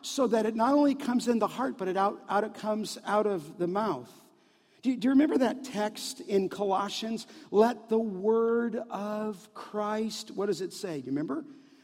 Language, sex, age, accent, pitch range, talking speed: English, male, 50-69, American, 185-270 Hz, 205 wpm